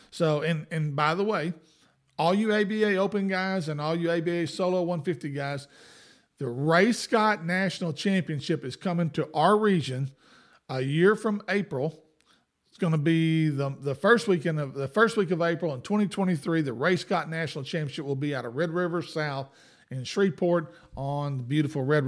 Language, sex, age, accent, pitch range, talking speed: English, male, 50-69, American, 150-190 Hz, 180 wpm